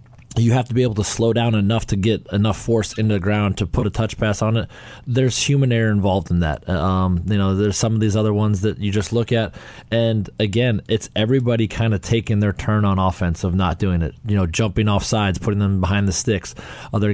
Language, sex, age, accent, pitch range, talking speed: English, male, 20-39, American, 100-120 Hz, 240 wpm